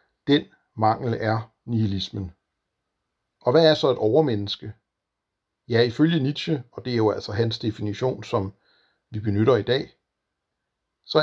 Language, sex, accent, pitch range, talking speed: Danish, male, native, 105-125 Hz, 140 wpm